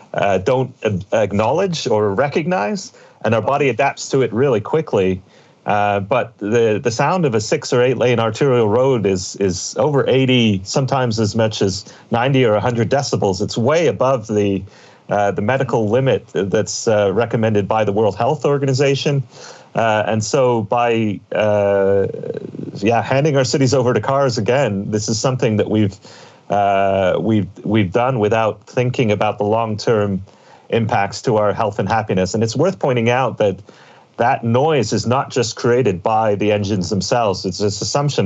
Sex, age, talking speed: male, 40-59, 165 wpm